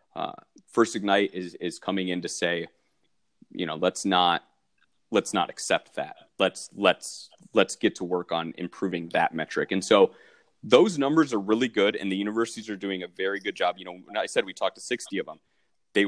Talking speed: 200 wpm